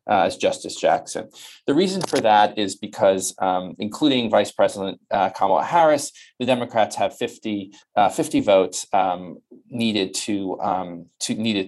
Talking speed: 135 wpm